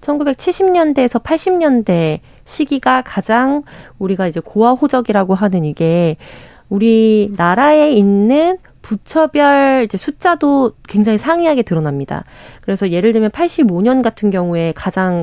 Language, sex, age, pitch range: Korean, female, 20-39, 180-270 Hz